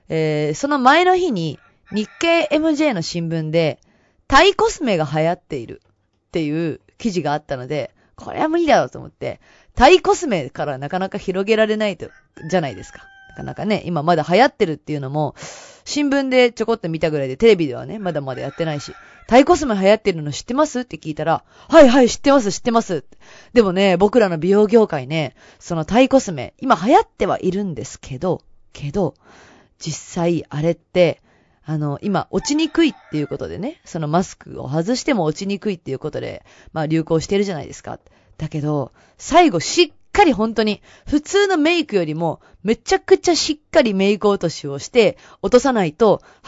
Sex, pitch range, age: female, 160-270 Hz, 20-39